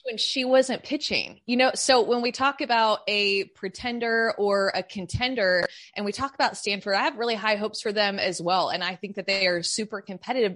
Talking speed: 215 wpm